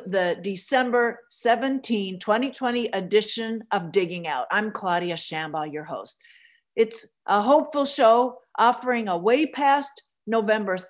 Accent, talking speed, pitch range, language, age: American, 120 wpm, 200-280 Hz, English, 50-69